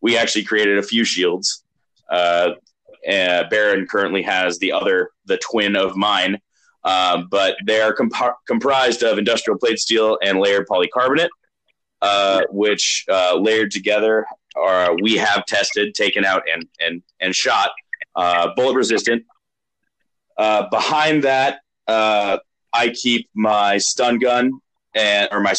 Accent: American